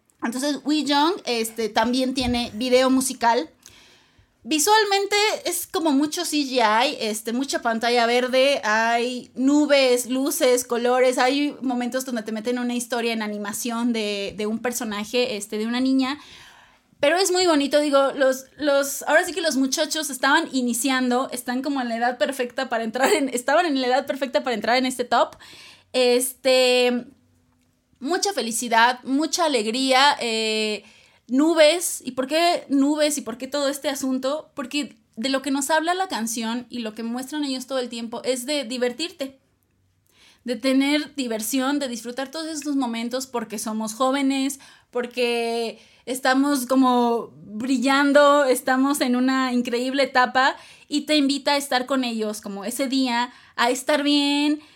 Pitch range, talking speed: 240-285 Hz, 155 wpm